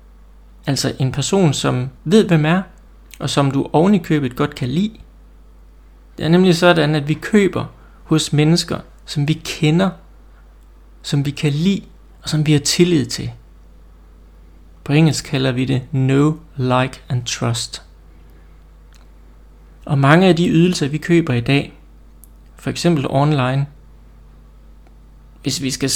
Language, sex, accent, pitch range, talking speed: Danish, male, native, 120-165 Hz, 140 wpm